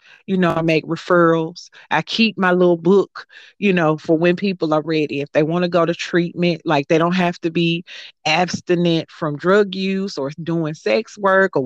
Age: 30-49